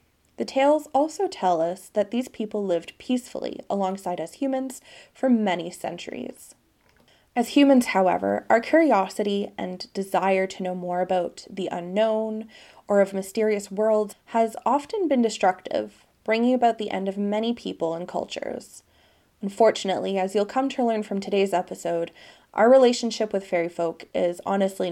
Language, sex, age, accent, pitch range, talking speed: English, female, 20-39, American, 190-245 Hz, 150 wpm